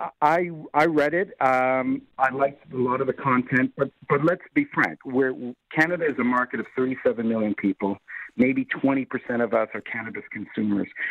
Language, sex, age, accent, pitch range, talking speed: English, male, 50-69, American, 125-150 Hz, 190 wpm